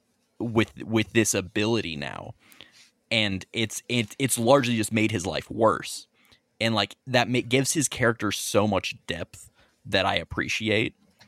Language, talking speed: English, 150 wpm